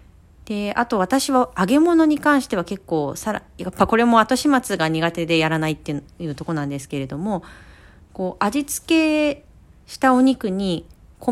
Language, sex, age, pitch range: Japanese, female, 40-59, 145-225 Hz